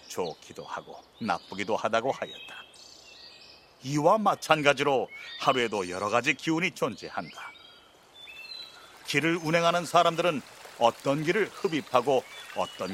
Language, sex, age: Korean, male, 40-59